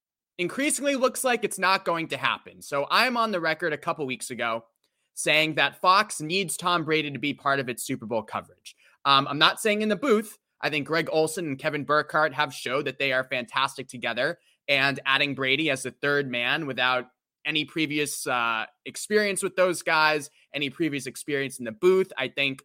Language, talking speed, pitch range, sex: English, 200 wpm, 135-165 Hz, male